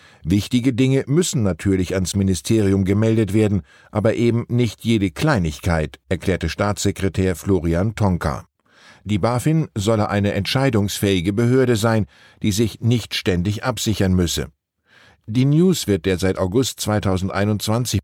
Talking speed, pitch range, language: 125 wpm, 95-125 Hz, German